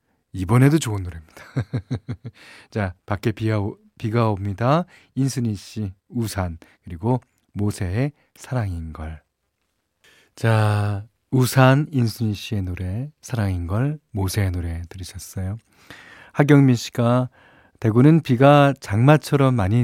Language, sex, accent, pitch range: Korean, male, native, 95-125 Hz